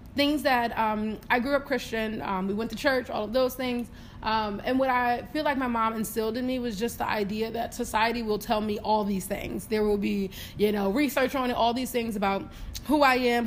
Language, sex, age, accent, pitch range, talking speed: English, female, 20-39, American, 215-255 Hz, 240 wpm